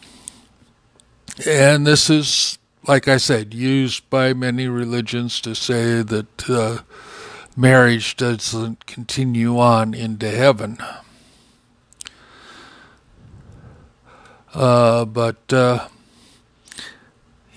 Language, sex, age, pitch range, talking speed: English, male, 60-79, 115-130 Hz, 80 wpm